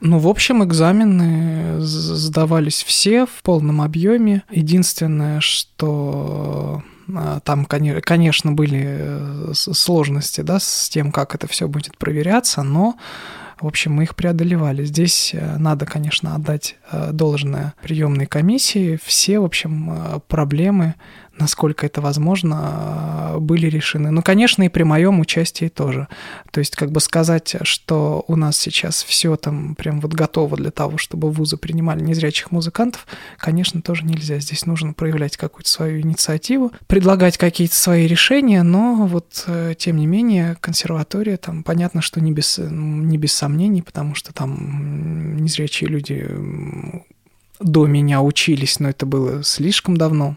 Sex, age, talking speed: male, 20-39, 135 wpm